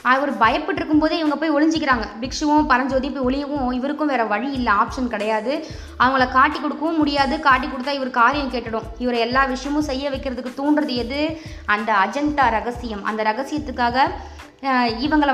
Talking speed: 145 wpm